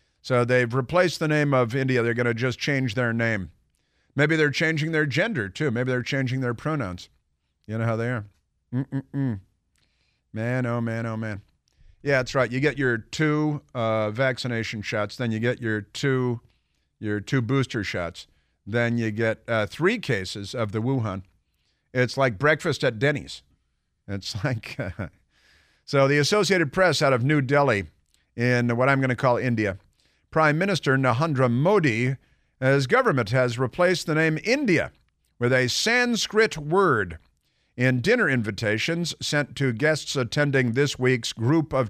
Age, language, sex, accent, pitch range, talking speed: 50-69, English, male, American, 110-150 Hz, 160 wpm